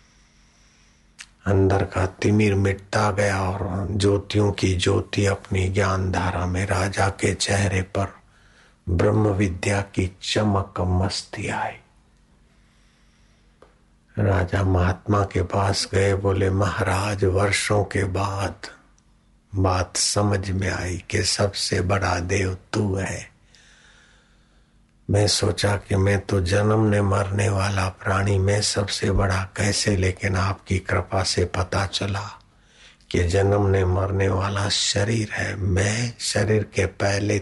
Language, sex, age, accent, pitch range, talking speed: Hindi, male, 60-79, native, 95-105 Hz, 115 wpm